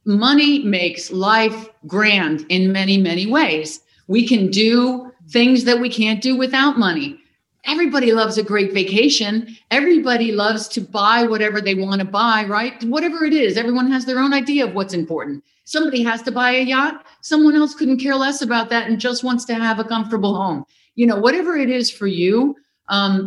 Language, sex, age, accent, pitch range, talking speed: English, female, 50-69, American, 185-235 Hz, 185 wpm